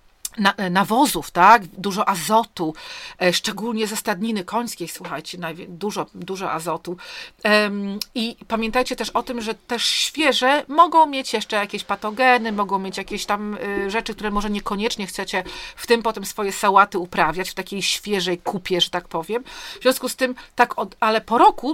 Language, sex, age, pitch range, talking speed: Polish, female, 40-59, 190-235 Hz, 165 wpm